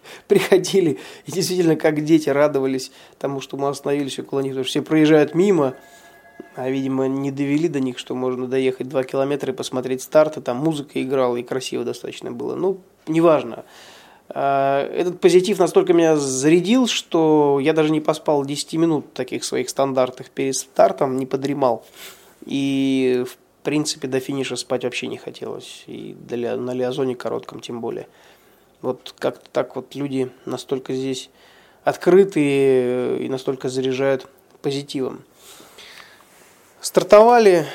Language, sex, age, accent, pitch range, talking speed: Russian, male, 20-39, native, 135-165 Hz, 140 wpm